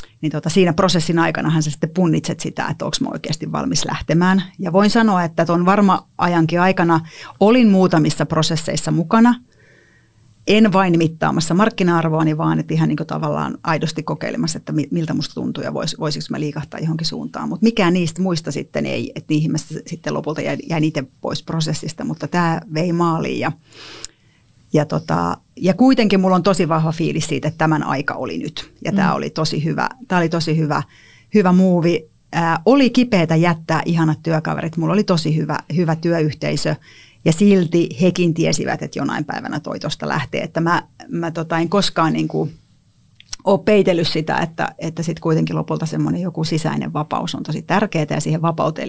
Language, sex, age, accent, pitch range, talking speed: Finnish, female, 30-49, native, 155-180 Hz, 170 wpm